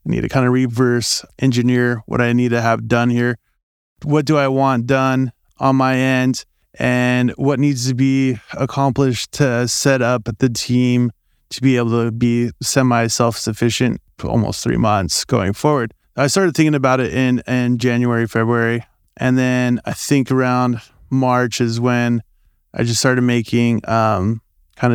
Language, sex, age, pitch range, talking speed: English, male, 20-39, 115-130 Hz, 165 wpm